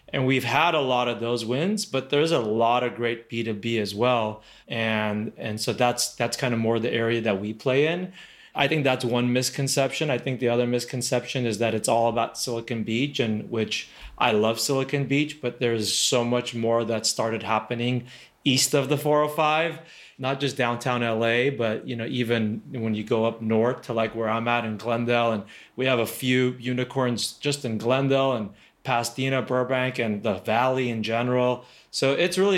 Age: 30-49